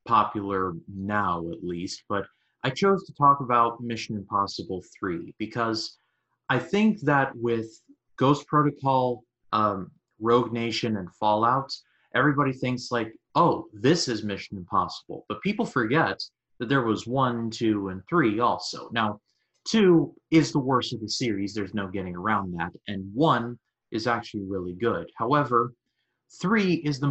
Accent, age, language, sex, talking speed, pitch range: American, 30-49, English, male, 150 wpm, 100-130 Hz